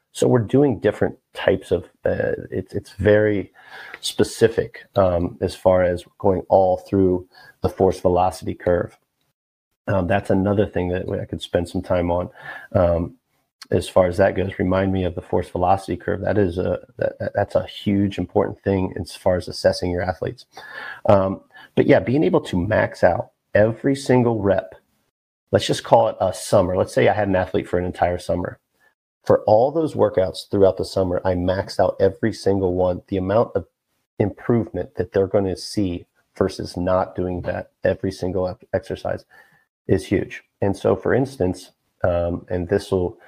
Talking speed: 175 wpm